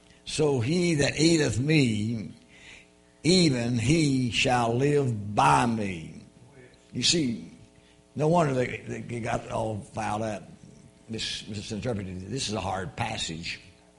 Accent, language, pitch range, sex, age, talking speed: American, English, 85-135 Hz, male, 60-79, 120 wpm